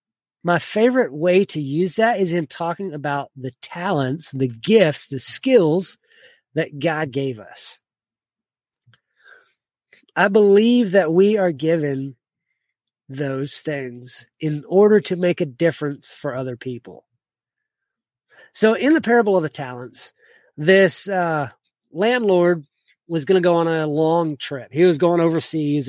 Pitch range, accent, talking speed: 145-190 Hz, American, 135 wpm